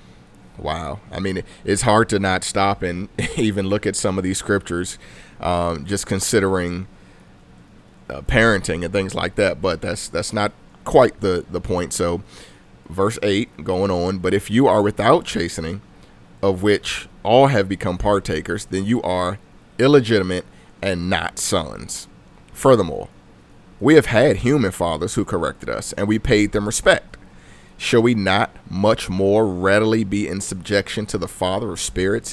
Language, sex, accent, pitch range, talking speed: English, male, American, 90-105 Hz, 160 wpm